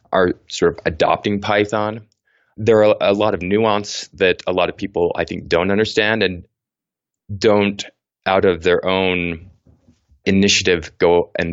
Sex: male